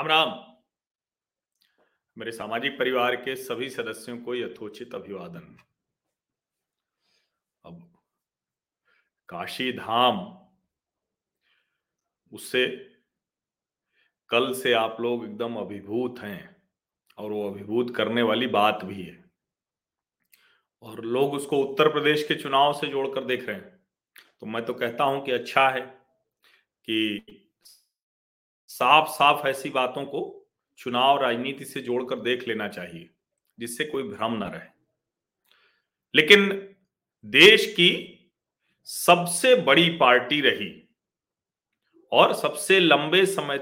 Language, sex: Hindi, male